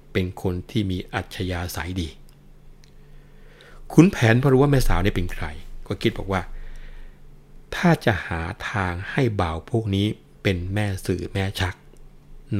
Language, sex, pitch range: Thai, male, 85-105 Hz